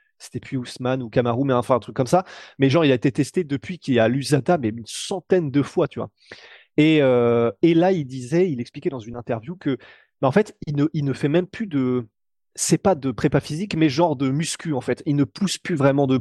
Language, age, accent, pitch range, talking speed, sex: French, 30-49, French, 130-175 Hz, 255 wpm, male